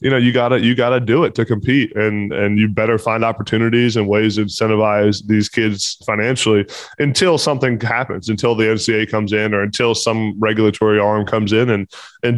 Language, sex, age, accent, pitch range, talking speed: English, male, 20-39, American, 105-120 Hz, 205 wpm